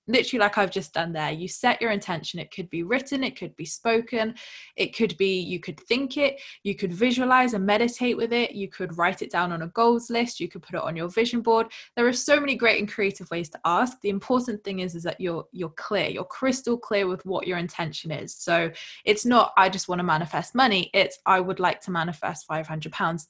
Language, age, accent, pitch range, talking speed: English, 20-39, British, 180-230 Hz, 240 wpm